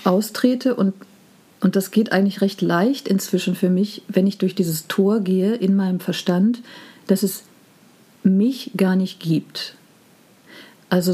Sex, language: female, German